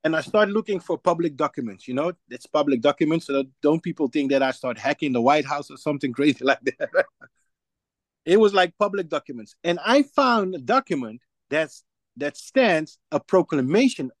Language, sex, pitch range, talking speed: English, male, 145-200 Hz, 175 wpm